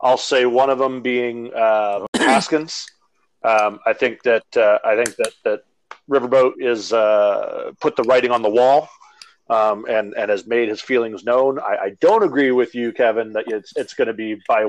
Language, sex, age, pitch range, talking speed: English, male, 40-59, 105-135 Hz, 195 wpm